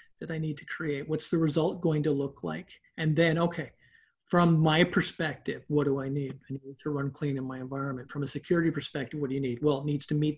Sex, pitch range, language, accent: male, 145-170 Hz, English, American